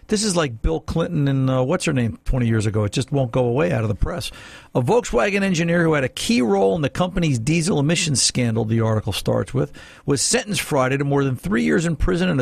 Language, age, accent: English, 50-69, American